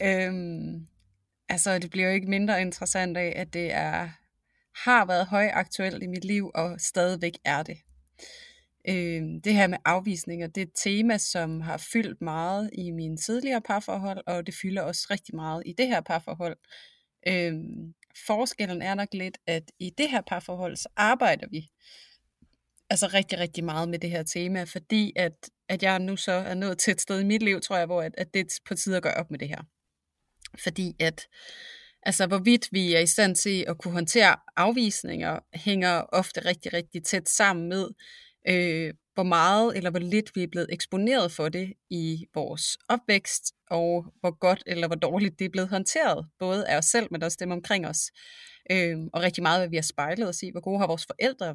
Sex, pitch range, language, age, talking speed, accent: female, 170-200 Hz, Danish, 30-49, 195 wpm, native